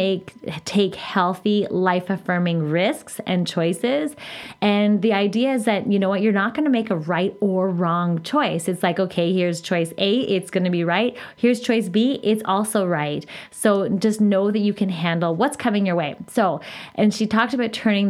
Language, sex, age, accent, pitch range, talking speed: English, female, 20-39, American, 180-225 Hz, 195 wpm